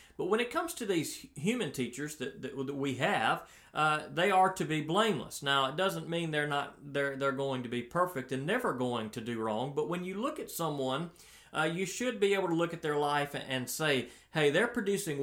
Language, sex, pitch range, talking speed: English, male, 125-170 Hz, 225 wpm